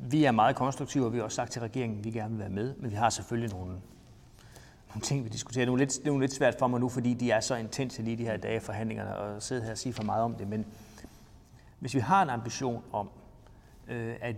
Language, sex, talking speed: Danish, male, 260 wpm